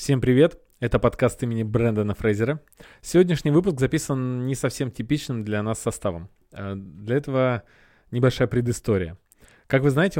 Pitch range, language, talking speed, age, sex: 110-140 Hz, Russian, 135 wpm, 20-39, male